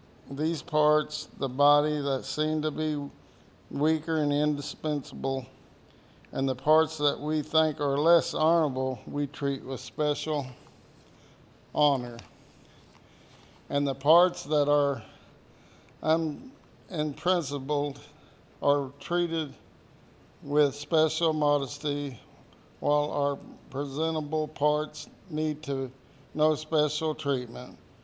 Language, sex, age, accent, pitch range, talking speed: English, male, 60-79, American, 135-155 Hz, 95 wpm